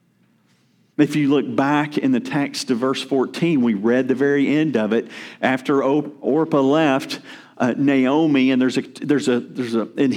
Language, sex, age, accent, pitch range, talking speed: English, male, 50-69, American, 135-185 Hz, 175 wpm